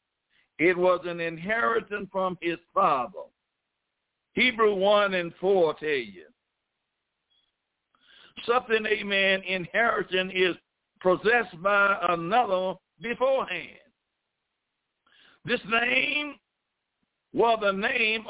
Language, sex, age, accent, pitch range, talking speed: English, male, 60-79, American, 185-240 Hz, 90 wpm